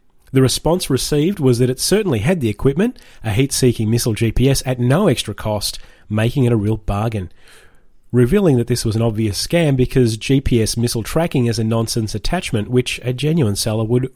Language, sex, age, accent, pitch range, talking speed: English, male, 30-49, Australian, 115-140 Hz, 180 wpm